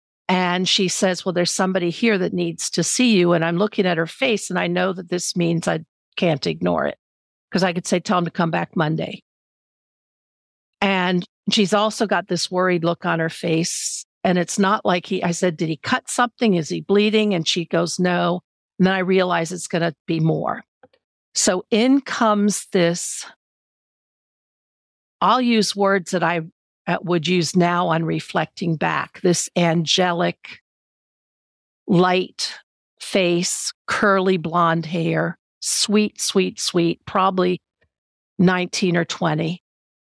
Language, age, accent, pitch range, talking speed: English, 50-69, American, 170-195 Hz, 155 wpm